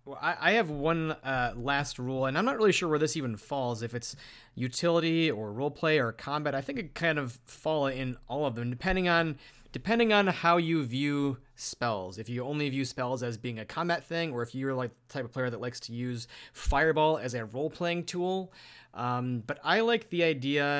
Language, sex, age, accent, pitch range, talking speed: English, male, 30-49, American, 120-155 Hz, 215 wpm